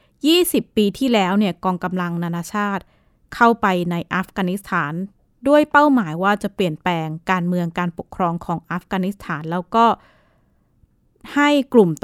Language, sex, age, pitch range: Thai, female, 20-39, 175-220 Hz